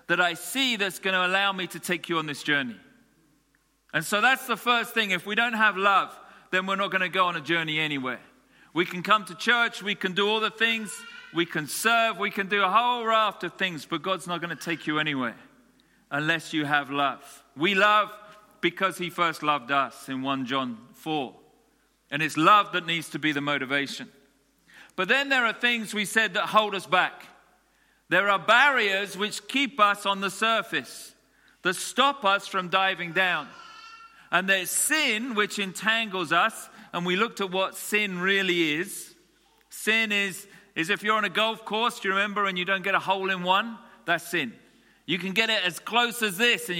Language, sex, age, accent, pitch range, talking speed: English, male, 40-59, British, 170-220 Hz, 205 wpm